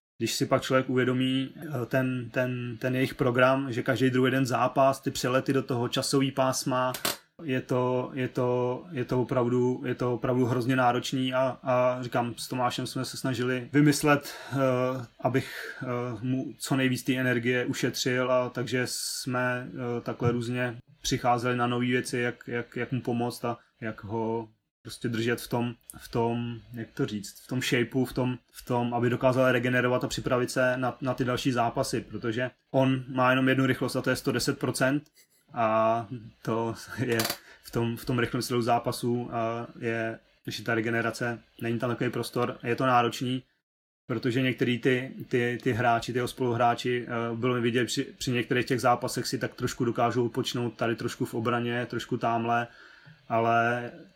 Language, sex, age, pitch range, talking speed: Slovak, male, 20-39, 120-130 Hz, 170 wpm